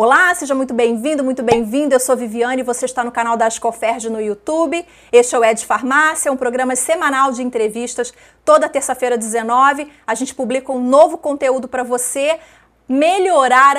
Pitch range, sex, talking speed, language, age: 245-295 Hz, female, 175 wpm, Portuguese, 30-49